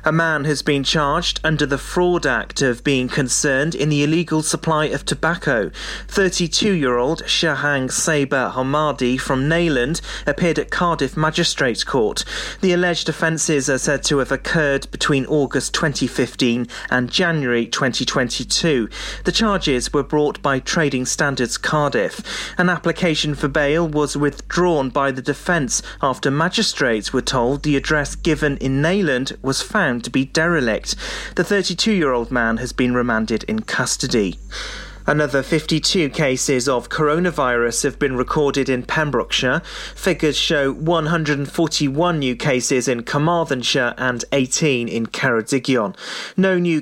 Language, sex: English, male